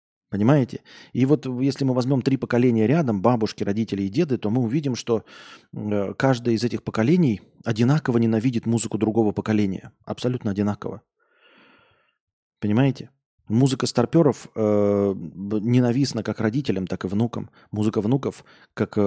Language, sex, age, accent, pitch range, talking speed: Russian, male, 20-39, native, 105-125 Hz, 130 wpm